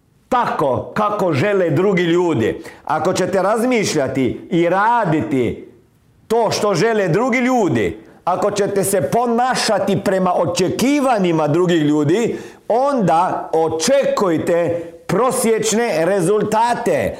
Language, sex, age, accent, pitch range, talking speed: Croatian, male, 50-69, native, 175-245 Hz, 95 wpm